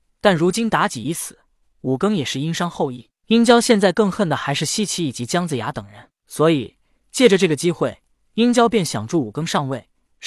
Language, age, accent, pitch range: Chinese, 20-39, native, 135-195 Hz